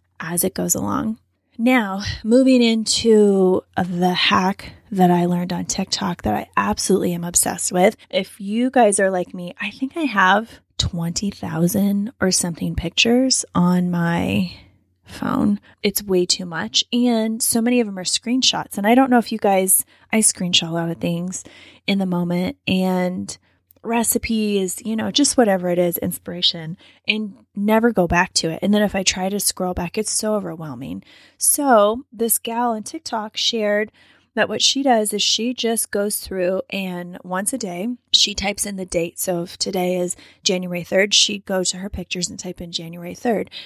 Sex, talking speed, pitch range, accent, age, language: female, 180 wpm, 180-220 Hz, American, 10-29, English